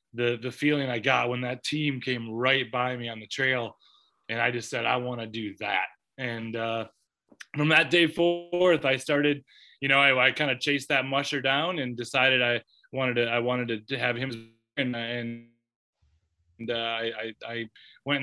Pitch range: 115-140 Hz